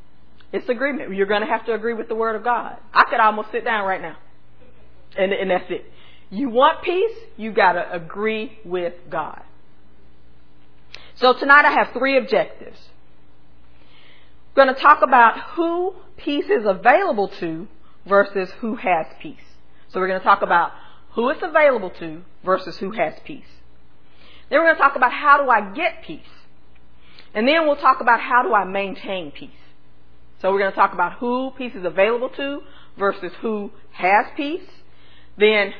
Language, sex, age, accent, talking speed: English, female, 40-59, American, 175 wpm